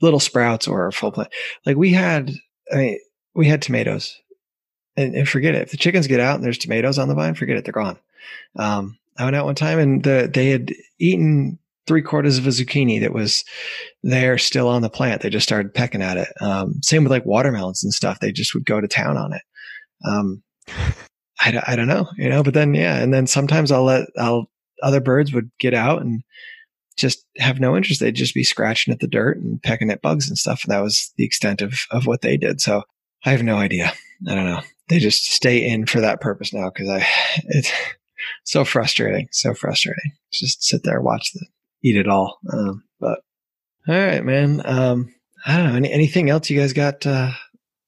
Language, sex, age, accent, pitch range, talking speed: English, male, 20-39, American, 115-155 Hz, 215 wpm